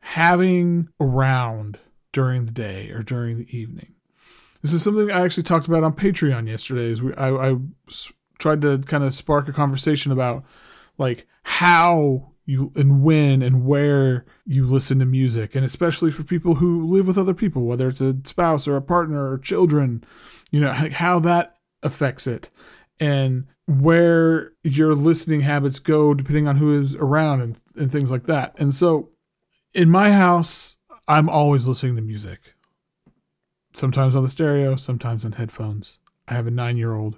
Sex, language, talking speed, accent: male, English, 170 wpm, American